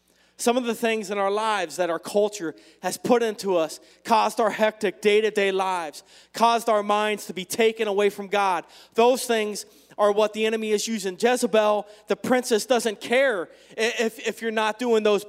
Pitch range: 210-240 Hz